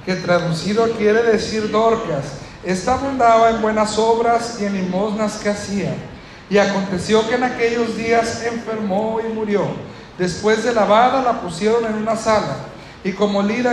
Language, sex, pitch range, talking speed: Spanish, male, 190-230 Hz, 155 wpm